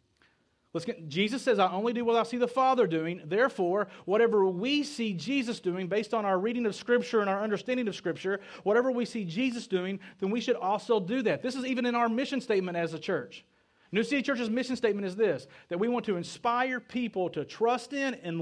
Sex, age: male, 40-59